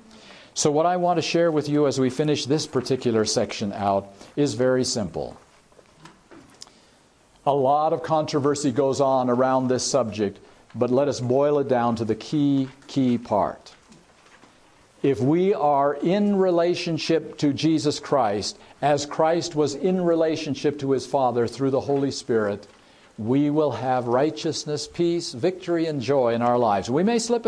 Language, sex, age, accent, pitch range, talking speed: English, male, 50-69, American, 135-200 Hz, 155 wpm